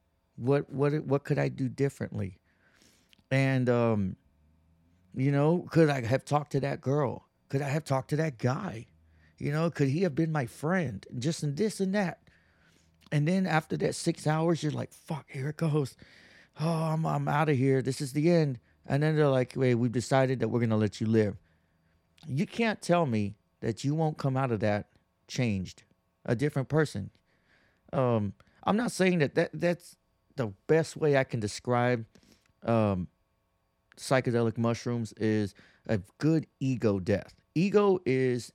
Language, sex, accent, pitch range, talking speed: English, male, American, 105-150 Hz, 175 wpm